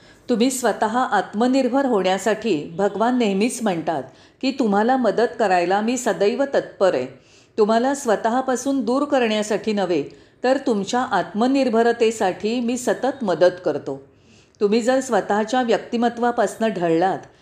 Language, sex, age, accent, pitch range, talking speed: Marathi, female, 40-59, native, 175-245 Hz, 110 wpm